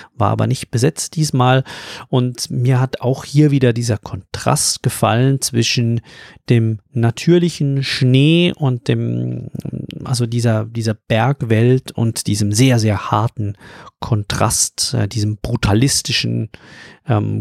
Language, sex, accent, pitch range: German, male, German, 110-135 Hz